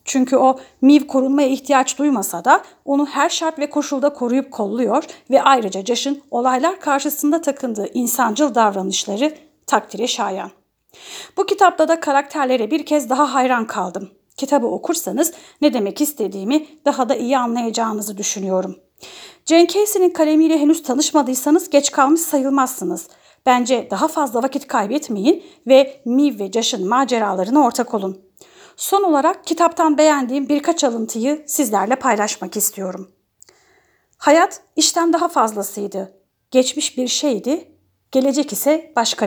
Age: 40-59